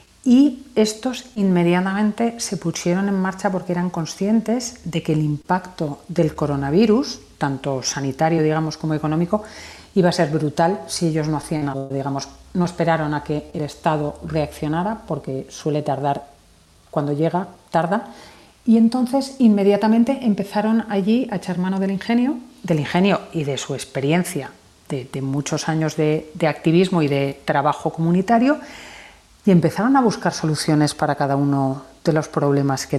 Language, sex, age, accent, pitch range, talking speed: Spanish, female, 40-59, Spanish, 150-190 Hz, 150 wpm